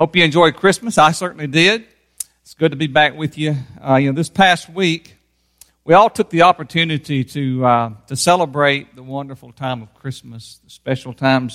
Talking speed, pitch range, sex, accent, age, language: 190 wpm, 120-150 Hz, male, American, 50-69, English